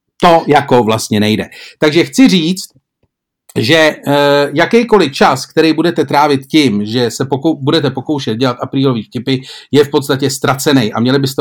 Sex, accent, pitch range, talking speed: male, native, 125-150 Hz, 160 wpm